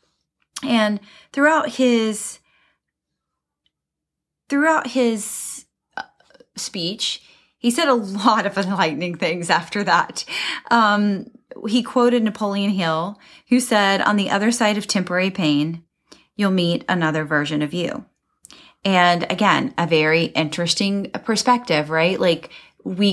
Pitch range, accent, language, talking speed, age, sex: 175-225 Hz, American, English, 115 wpm, 30-49, female